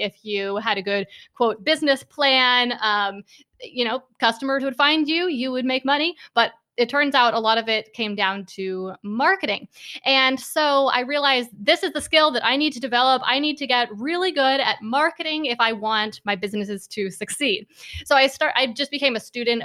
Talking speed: 205 wpm